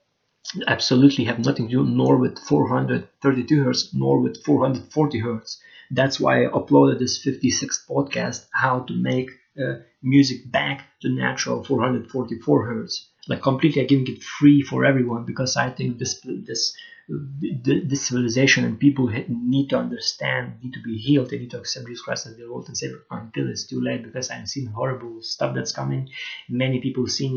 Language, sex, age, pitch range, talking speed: English, male, 30-49, 115-130 Hz, 175 wpm